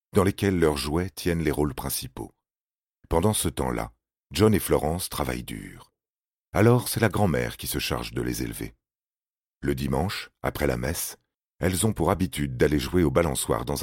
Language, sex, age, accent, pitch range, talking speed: French, male, 40-59, French, 70-90 Hz, 175 wpm